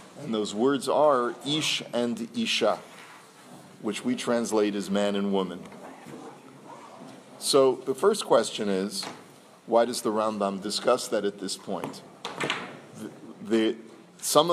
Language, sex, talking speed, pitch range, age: English, male, 120 wpm, 100-115 Hz, 40-59